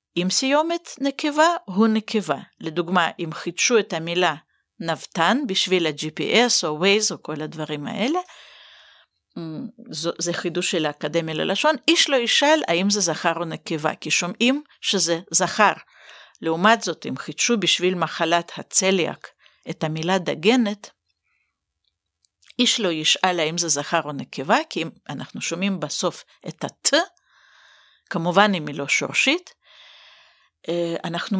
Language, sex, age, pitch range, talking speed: Hebrew, female, 50-69, 170-235 Hz, 130 wpm